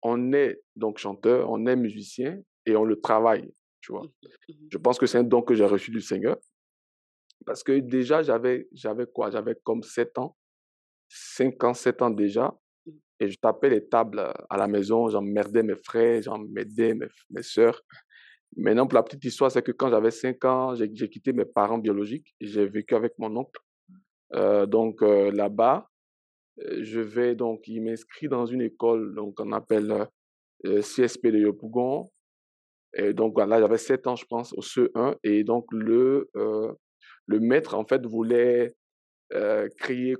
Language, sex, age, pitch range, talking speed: French, male, 50-69, 110-125 Hz, 175 wpm